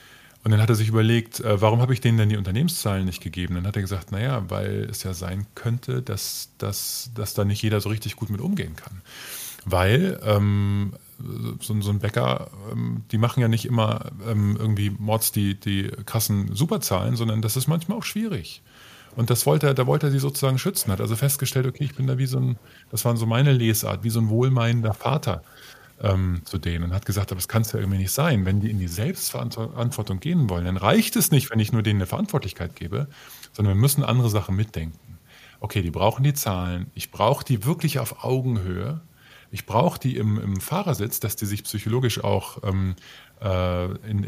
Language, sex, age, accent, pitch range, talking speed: German, male, 20-39, German, 100-130 Hz, 210 wpm